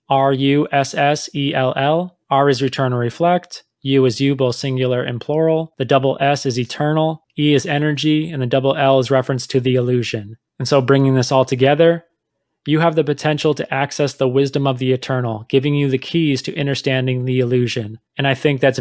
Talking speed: 205 wpm